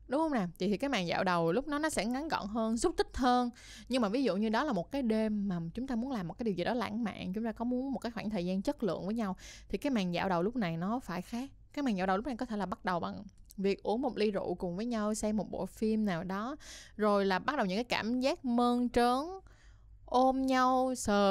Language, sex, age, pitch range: Vietnamese, female, 10-29, 190-245 Hz